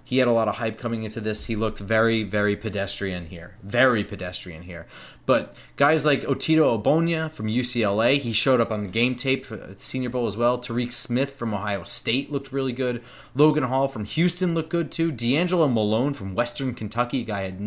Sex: male